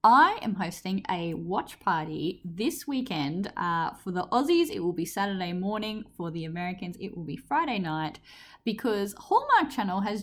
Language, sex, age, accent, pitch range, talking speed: English, female, 10-29, Australian, 175-240 Hz, 170 wpm